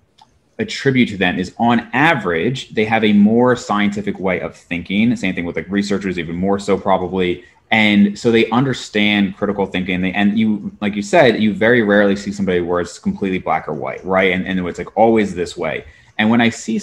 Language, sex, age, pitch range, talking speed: English, male, 30-49, 95-120 Hz, 205 wpm